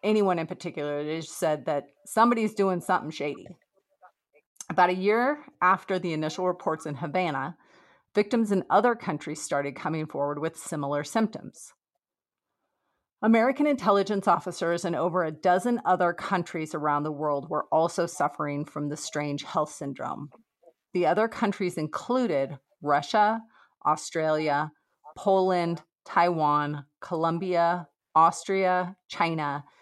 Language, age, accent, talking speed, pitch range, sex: English, 30-49, American, 120 wpm, 150-190 Hz, female